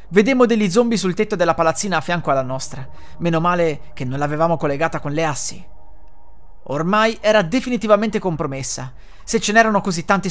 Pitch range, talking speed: 130-210 Hz, 170 wpm